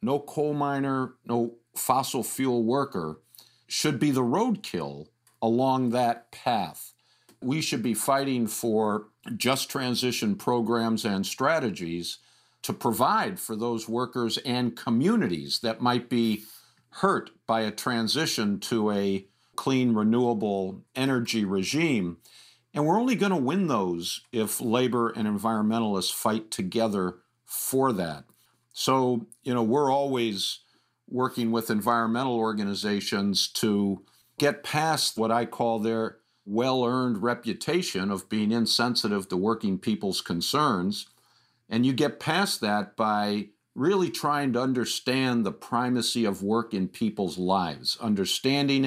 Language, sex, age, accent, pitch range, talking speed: English, male, 50-69, American, 105-130 Hz, 125 wpm